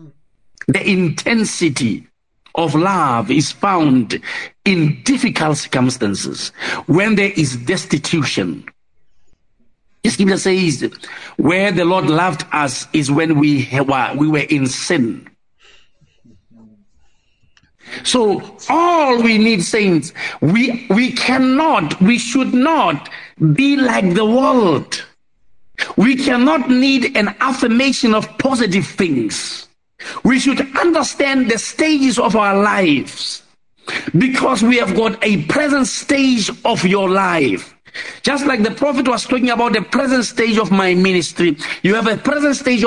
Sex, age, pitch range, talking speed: male, 60-79, 180-255 Hz, 120 wpm